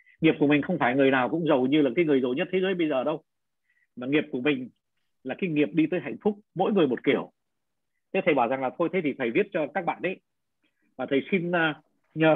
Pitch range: 165-230 Hz